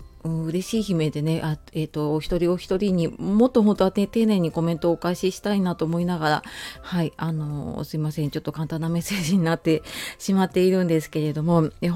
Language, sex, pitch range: Japanese, female, 155-205 Hz